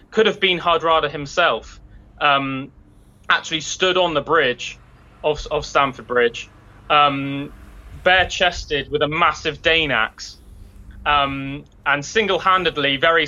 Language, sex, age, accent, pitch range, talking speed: English, male, 20-39, British, 135-160 Hz, 120 wpm